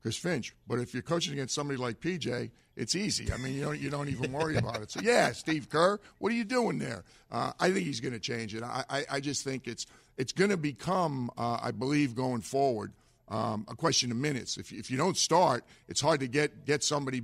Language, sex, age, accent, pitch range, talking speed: English, male, 50-69, American, 120-145 Hz, 245 wpm